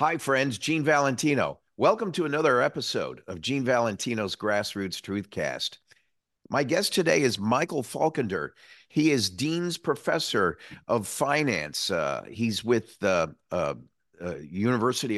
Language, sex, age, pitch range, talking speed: English, male, 50-69, 110-135 Hz, 125 wpm